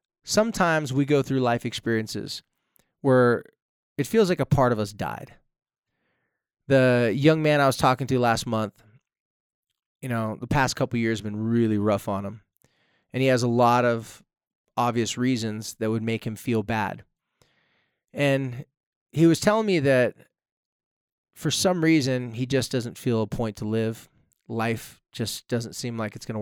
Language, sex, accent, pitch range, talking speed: English, male, American, 115-150 Hz, 170 wpm